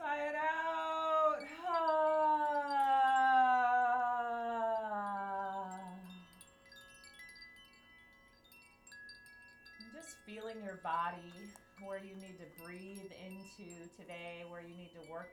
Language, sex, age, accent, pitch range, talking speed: English, female, 30-49, American, 185-250 Hz, 80 wpm